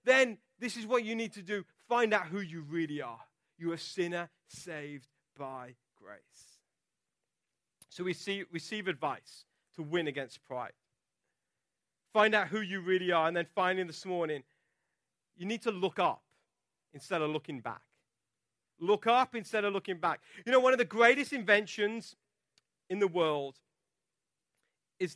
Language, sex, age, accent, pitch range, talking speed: English, male, 30-49, British, 170-225 Hz, 155 wpm